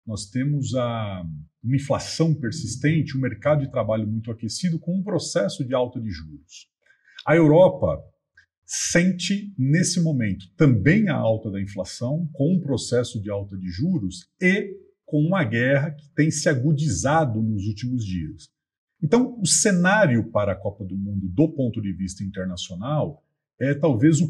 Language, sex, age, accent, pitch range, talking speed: Portuguese, male, 50-69, Brazilian, 110-160 Hz, 155 wpm